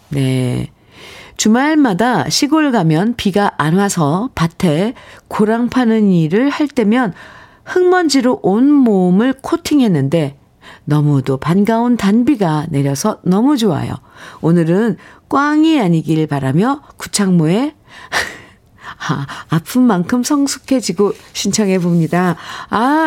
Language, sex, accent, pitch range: Korean, female, native, 155-240 Hz